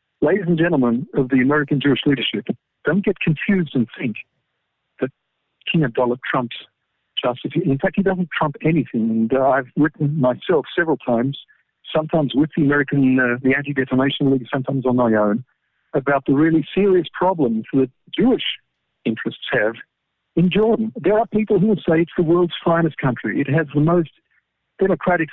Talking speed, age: 165 wpm, 50-69